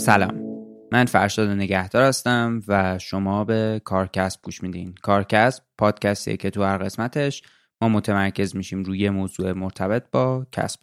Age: 20-39